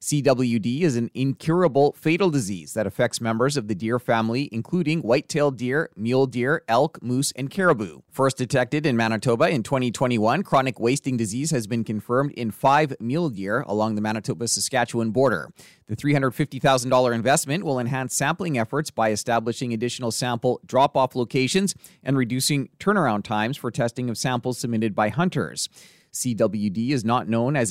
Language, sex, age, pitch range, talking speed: English, male, 30-49, 110-135 Hz, 160 wpm